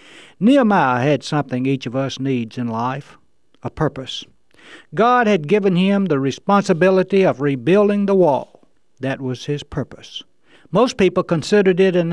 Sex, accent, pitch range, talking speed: male, American, 130-195 Hz, 150 wpm